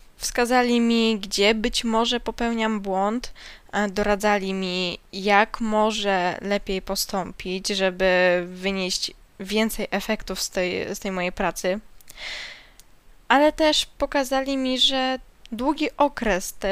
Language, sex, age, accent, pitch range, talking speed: Polish, female, 10-29, native, 195-245 Hz, 105 wpm